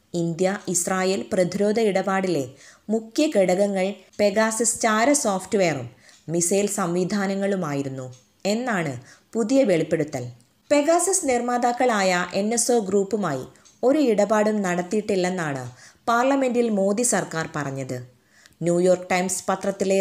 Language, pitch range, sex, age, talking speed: Malayalam, 175-220 Hz, female, 20-39, 85 wpm